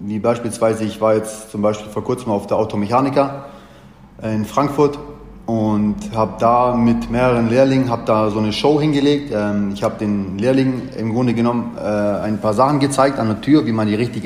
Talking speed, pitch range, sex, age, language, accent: 185 wpm, 110-130 Hz, male, 30-49, German, German